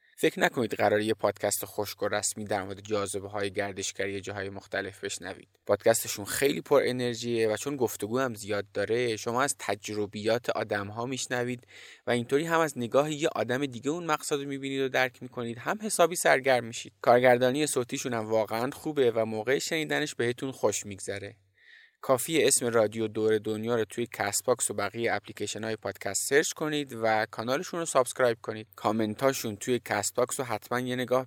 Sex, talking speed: male, 165 wpm